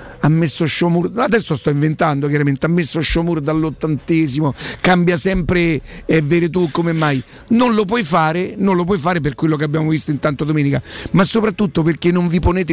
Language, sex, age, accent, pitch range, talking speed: Italian, male, 50-69, native, 150-195 Hz, 190 wpm